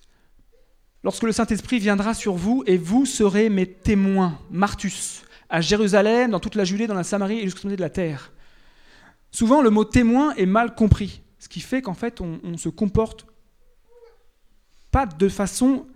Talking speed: 175 wpm